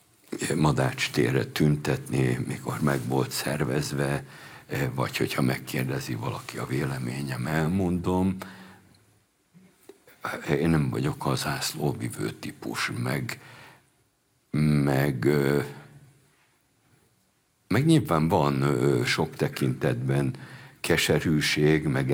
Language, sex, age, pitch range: Hungarian, male, 60-79, 70-95 Hz